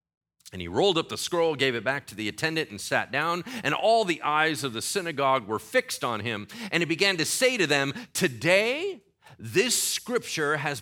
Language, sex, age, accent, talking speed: English, male, 40-59, American, 205 wpm